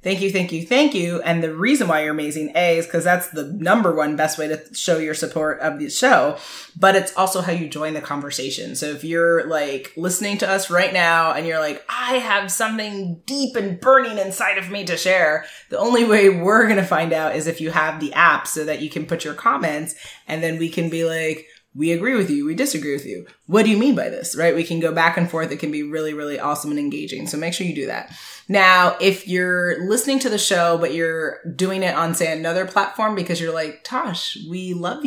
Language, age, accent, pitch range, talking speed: English, 20-39, American, 155-190 Hz, 245 wpm